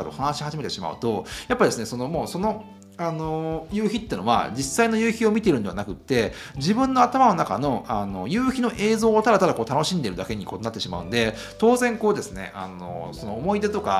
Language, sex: Japanese, male